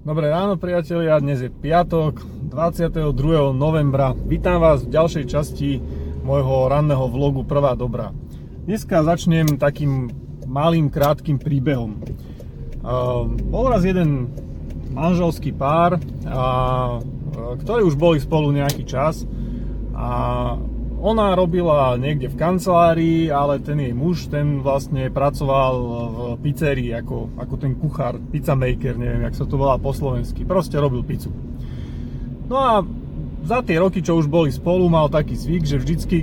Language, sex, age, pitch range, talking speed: Slovak, male, 30-49, 130-165 Hz, 135 wpm